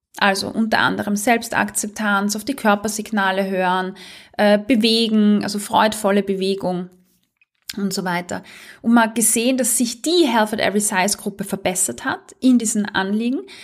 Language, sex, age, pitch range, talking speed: German, female, 20-39, 205-260 Hz, 145 wpm